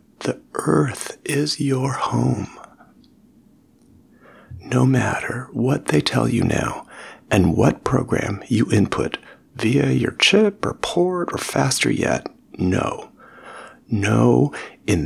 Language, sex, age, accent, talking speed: English, male, 40-59, American, 110 wpm